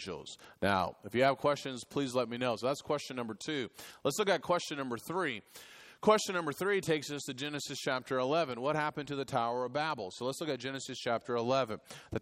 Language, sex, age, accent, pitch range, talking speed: English, male, 30-49, American, 125-160 Hz, 215 wpm